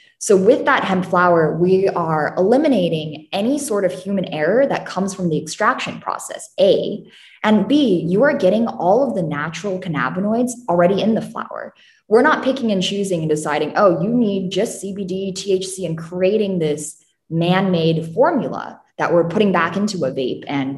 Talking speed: 175 wpm